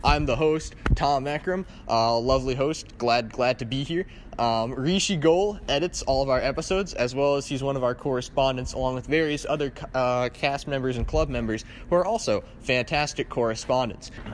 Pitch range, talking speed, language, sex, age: 135-195 Hz, 185 wpm, English, male, 20-39